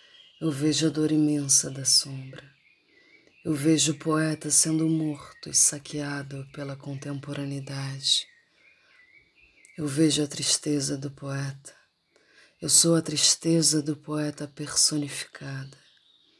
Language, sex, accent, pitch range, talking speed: Portuguese, female, Brazilian, 140-160 Hz, 110 wpm